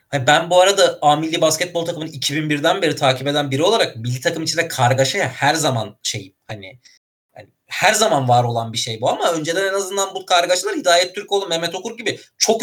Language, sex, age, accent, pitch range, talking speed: Turkish, male, 30-49, native, 130-180 Hz, 200 wpm